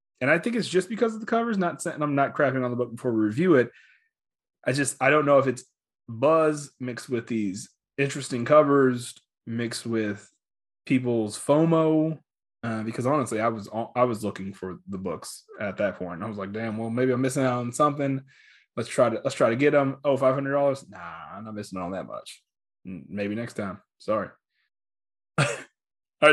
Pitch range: 120-160 Hz